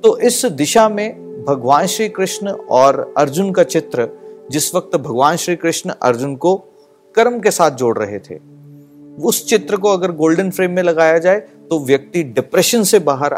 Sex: male